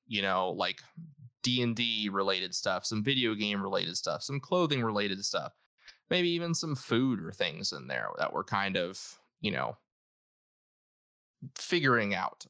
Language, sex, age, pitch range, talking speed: English, male, 20-39, 100-125 Hz, 150 wpm